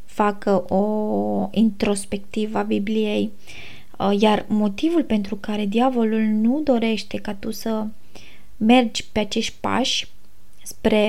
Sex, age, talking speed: female, 20-39, 110 wpm